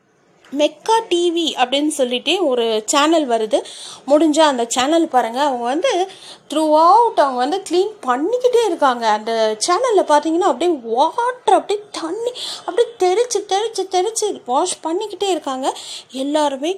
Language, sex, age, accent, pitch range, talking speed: Tamil, female, 30-49, native, 250-350 Hz, 125 wpm